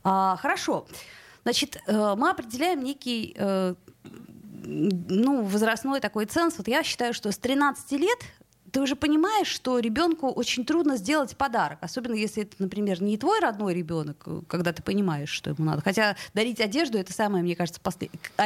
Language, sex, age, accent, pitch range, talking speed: Russian, female, 20-39, native, 195-275 Hz, 155 wpm